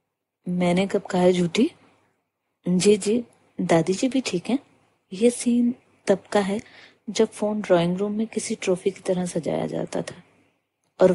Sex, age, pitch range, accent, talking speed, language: female, 30-49, 175-225 Hz, native, 160 wpm, Hindi